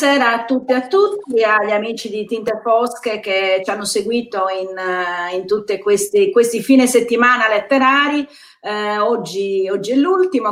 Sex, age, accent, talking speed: female, 40-59, native, 155 wpm